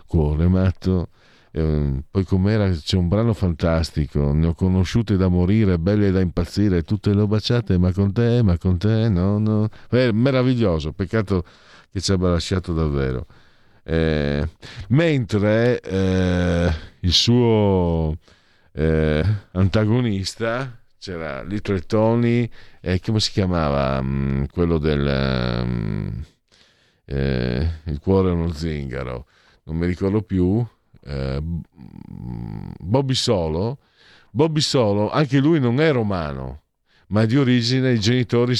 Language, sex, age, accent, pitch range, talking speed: Italian, male, 50-69, native, 80-110 Hz, 125 wpm